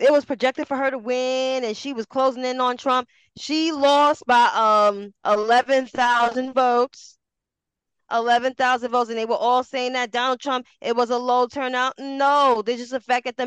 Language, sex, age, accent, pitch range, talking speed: English, female, 10-29, American, 220-265 Hz, 195 wpm